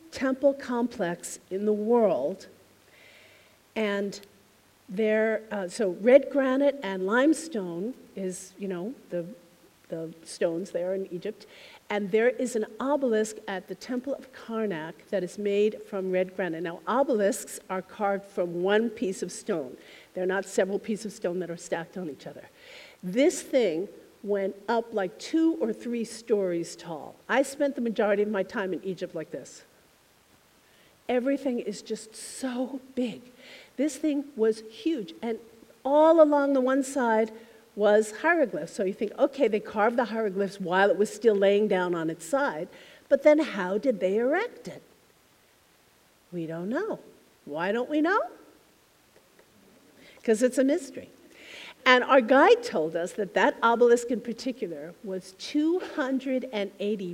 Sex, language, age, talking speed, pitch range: female, English, 50-69, 150 wpm, 195-265 Hz